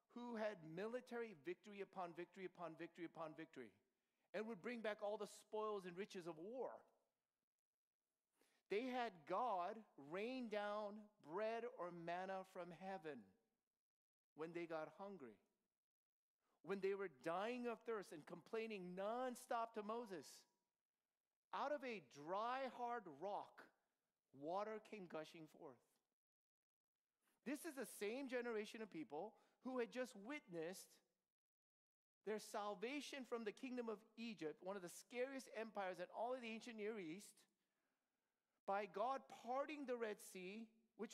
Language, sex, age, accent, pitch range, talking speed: English, male, 40-59, American, 185-240 Hz, 135 wpm